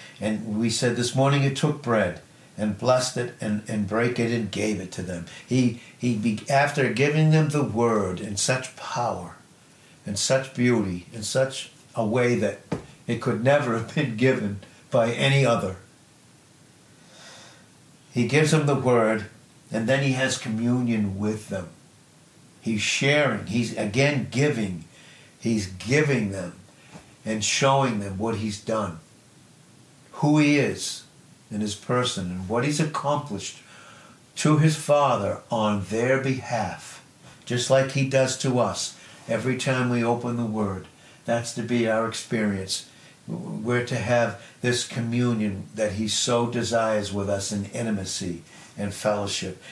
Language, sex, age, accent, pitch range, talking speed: English, male, 60-79, American, 110-135 Hz, 145 wpm